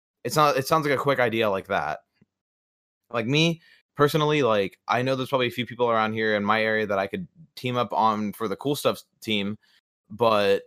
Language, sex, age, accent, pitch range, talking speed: English, male, 20-39, American, 105-135 Hz, 215 wpm